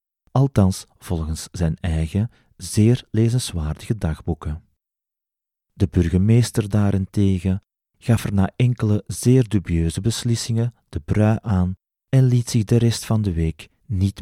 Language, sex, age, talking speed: Dutch, male, 40-59, 120 wpm